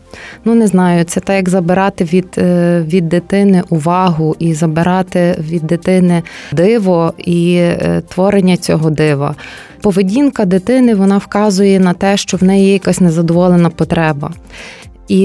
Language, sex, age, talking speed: Ukrainian, female, 20-39, 135 wpm